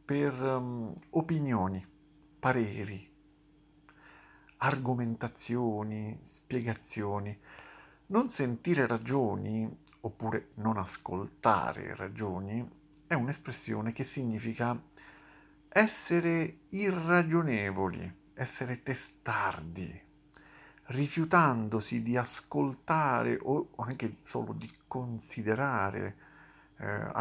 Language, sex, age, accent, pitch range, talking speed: Italian, male, 50-69, native, 105-145 Hz, 65 wpm